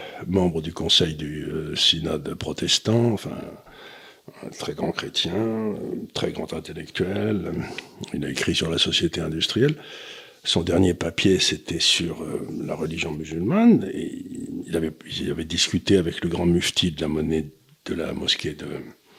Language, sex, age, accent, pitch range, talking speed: French, male, 50-69, French, 85-115 Hz, 150 wpm